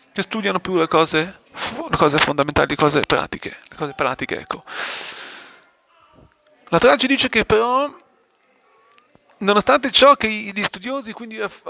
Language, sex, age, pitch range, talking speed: Italian, male, 30-49, 165-220 Hz, 140 wpm